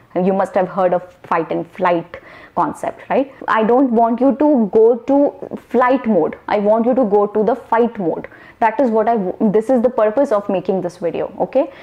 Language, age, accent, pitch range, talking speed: Hindi, 20-39, native, 195-260 Hz, 215 wpm